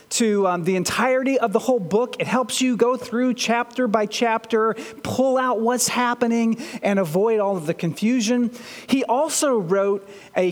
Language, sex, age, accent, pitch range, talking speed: English, male, 40-59, American, 185-245 Hz, 170 wpm